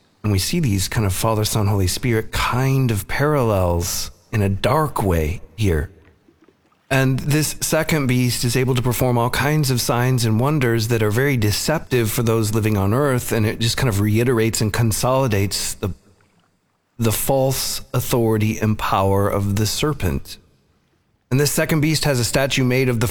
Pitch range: 105-130 Hz